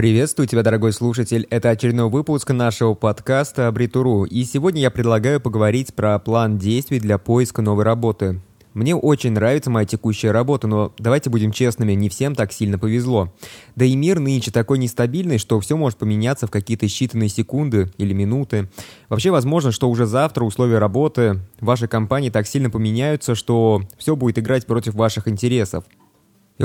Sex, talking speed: male, 165 wpm